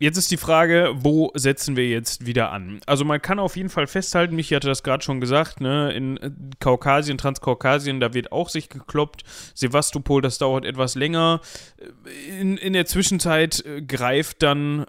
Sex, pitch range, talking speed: male, 135-170 Hz, 175 wpm